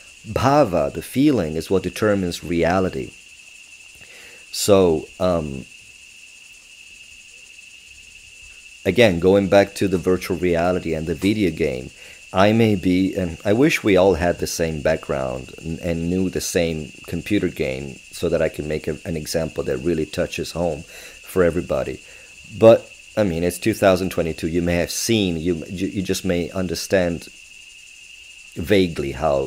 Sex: male